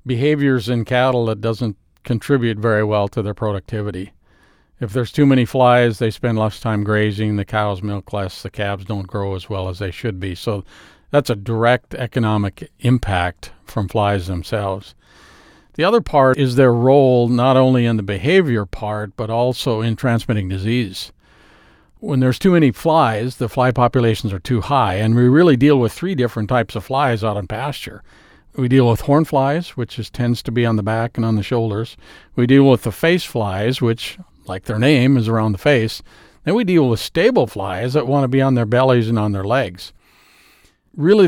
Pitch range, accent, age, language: 110-130 Hz, American, 50-69, English